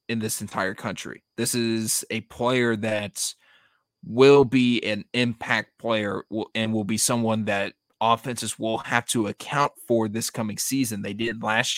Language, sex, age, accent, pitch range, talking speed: English, male, 20-39, American, 105-125 Hz, 160 wpm